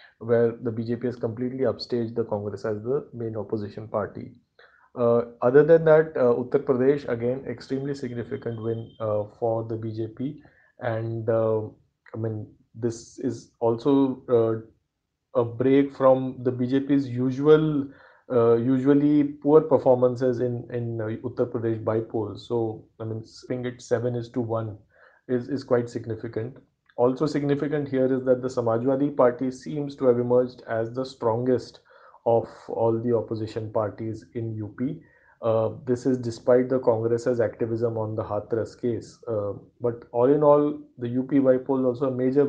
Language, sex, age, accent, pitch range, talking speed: English, male, 30-49, Indian, 115-130 Hz, 155 wpm